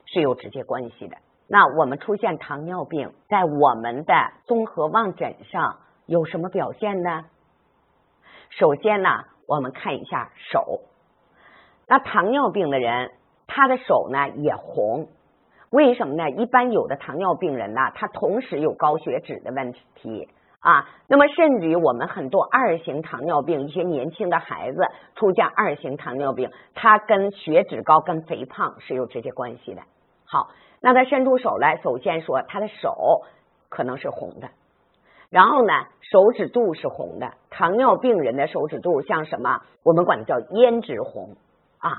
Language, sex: Chinese, female